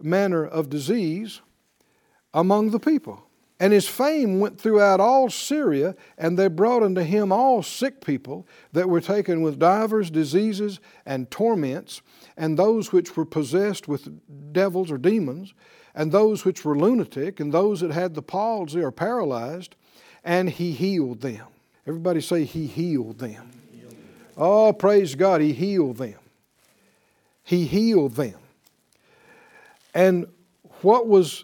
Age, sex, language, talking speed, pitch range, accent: 60-79, male, English, 135 wpm, 150-210 Hz, American